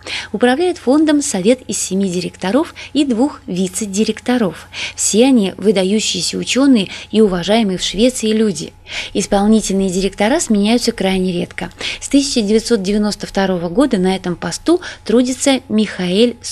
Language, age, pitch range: Russian, 20-39, 190-255 Hz